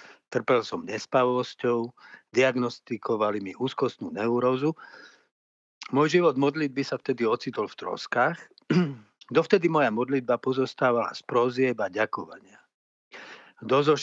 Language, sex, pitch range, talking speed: Slovak, male, 115-145 Hz, 100 wpm